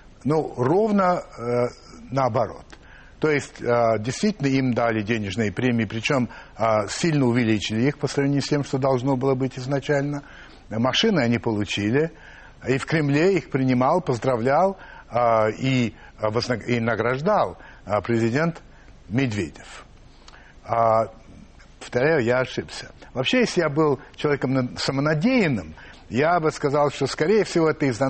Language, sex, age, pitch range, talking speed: Russian, male, 60-79, 115-150 Hz, 130 wpm